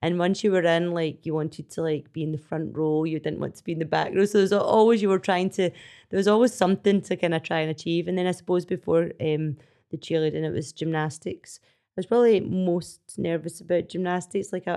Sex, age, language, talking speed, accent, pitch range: female, 30-49, English, 250 wpm, British, 160-185 Hz